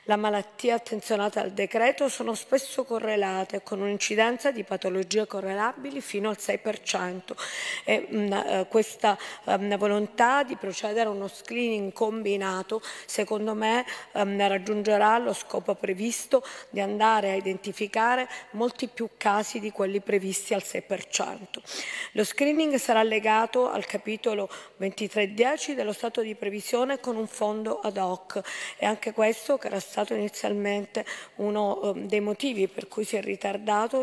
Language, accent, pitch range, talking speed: Italian, native, 205-235 Hz, 125 wpm